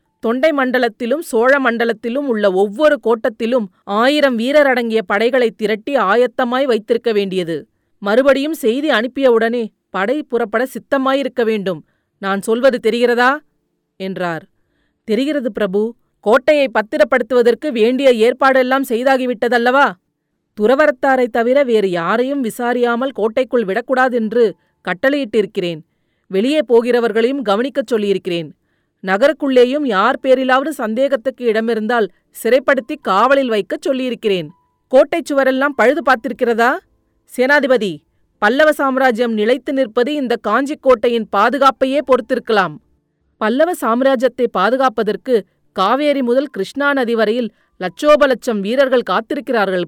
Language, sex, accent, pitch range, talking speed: Tamil, female, native, 220-270 Hz, 95 wpm